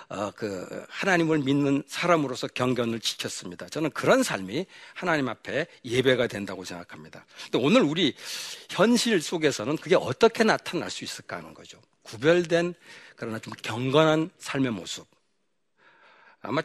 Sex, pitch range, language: male, 120-170 Hz, Korean